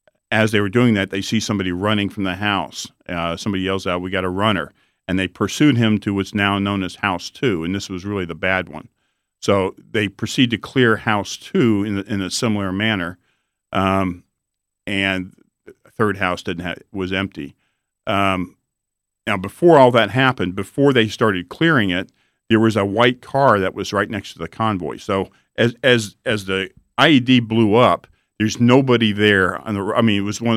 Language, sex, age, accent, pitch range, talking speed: English, male, 50-69, American, 95-110 Hz, 195 wpm